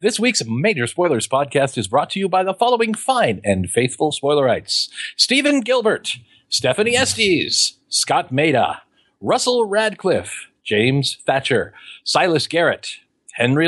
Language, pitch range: English, 145-210 Hz